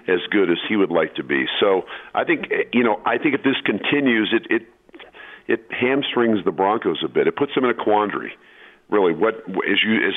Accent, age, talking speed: American, 50-69, 220 wpm